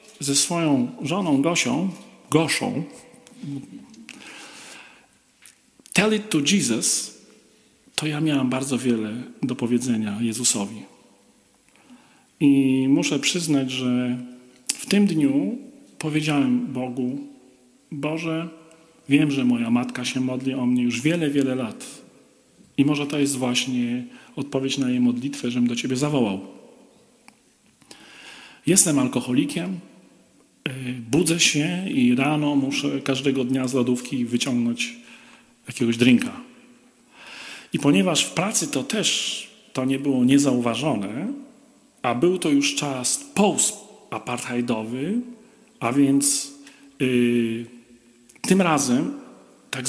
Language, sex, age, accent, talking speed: Polish, male, 40-59, native, 105 wpm